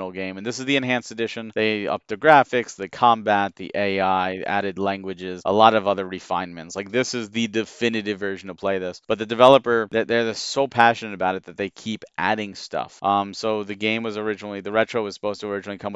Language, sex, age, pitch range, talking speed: English, male, 30-49, 95-110 Hz, 220 wpm